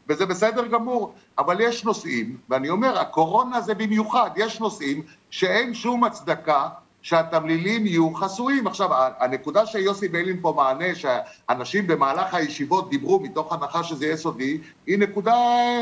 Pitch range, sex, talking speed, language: 175-230 Hz, male, 135 wpm, Hebrew